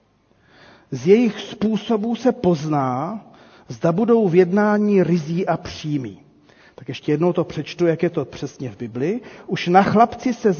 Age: 40-59